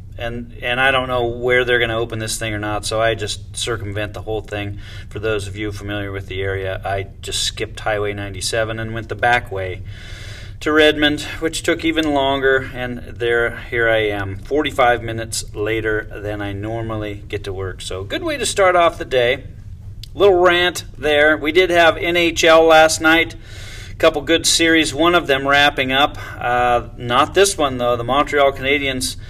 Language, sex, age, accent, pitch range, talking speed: English, male, 30-49, American, 105-140 Hz, 190 wpm